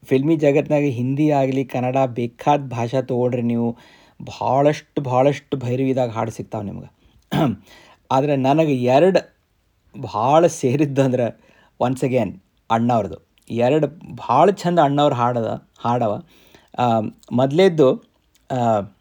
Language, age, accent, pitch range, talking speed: Kannada, 50-69, native, 120-165 Hz, 95 wpm